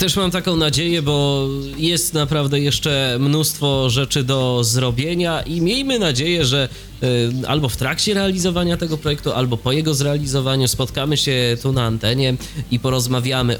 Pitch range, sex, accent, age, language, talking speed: 125-165 Hz, male, native, 20-39, Polish, 145 wpm